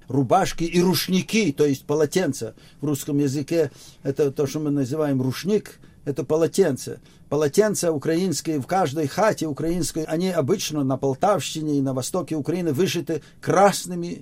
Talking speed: 140 wpm